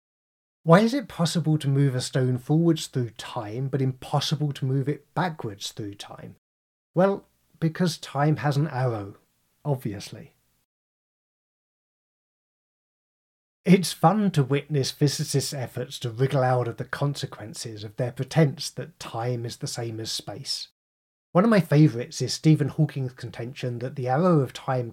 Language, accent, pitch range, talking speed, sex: English, British, 125-160 Hz, 145 wpm, male